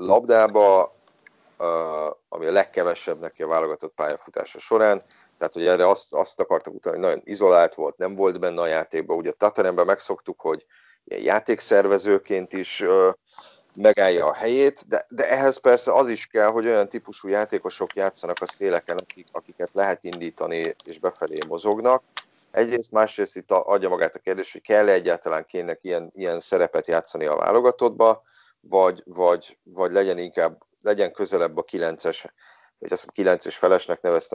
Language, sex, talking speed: Hungarian, male, 155 wpm